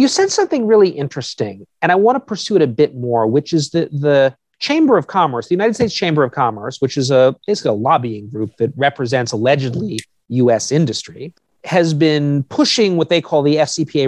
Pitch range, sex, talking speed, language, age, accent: 125-170 Hz, male, 200 wpm, English, 40-59, American